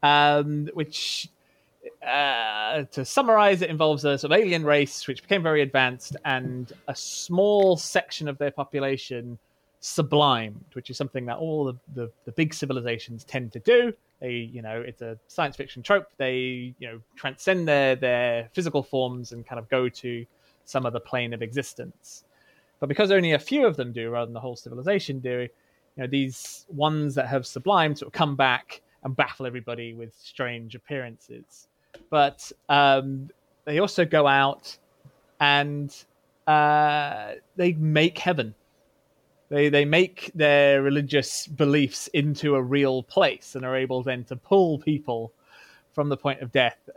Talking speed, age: 165 wpm, 20-39